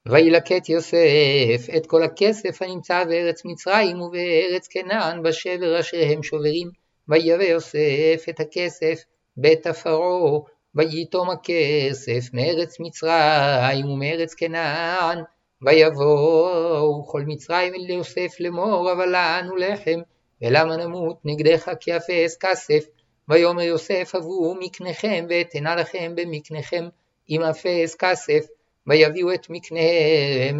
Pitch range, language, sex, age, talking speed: 155-180 Hz, Hebrew, male, 50-69, 110 wpm